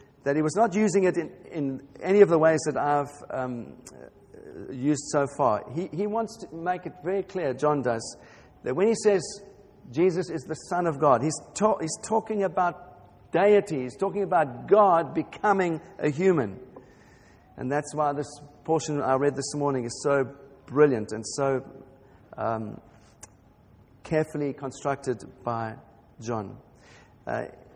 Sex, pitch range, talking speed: male, 140-185 Hz, 155 wpm